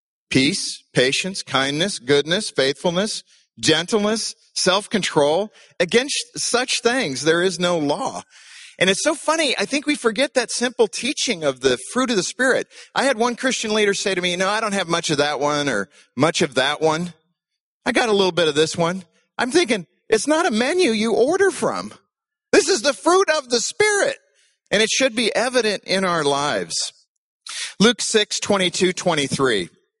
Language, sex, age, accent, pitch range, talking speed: English, male, 40-59, American, 150-230 Hz, 185 wpm